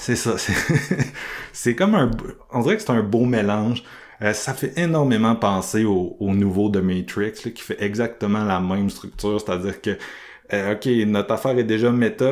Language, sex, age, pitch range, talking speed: French, male, 30-49, 105-125 Hz, 190 wpm